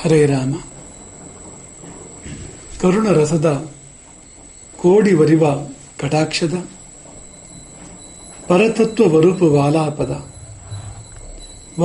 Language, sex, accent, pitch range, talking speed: English, male, Indian, 135-170 Hz, 55 wpm